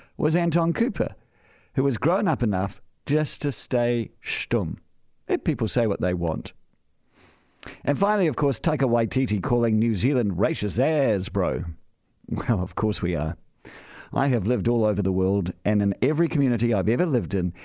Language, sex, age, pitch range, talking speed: English, male, 50-69, 100-140 Hz, 170 wpm